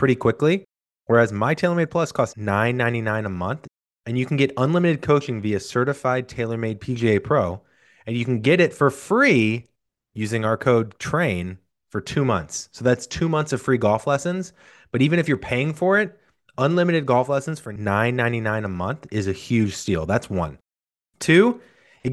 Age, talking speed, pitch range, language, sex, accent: 20-39, 175 wpm, 105-140 Hz, English, male, American